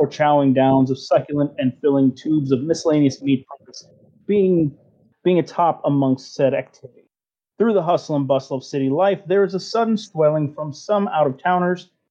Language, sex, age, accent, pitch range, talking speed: English, male, 30-49, American, 135-175 Hz, 175 wpm